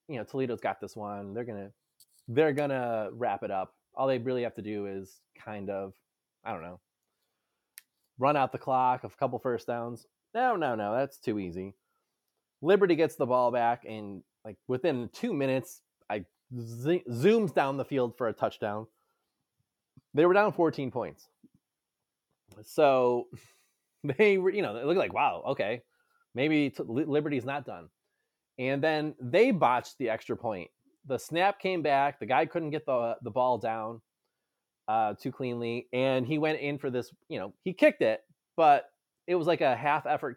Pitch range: 115-155 Hz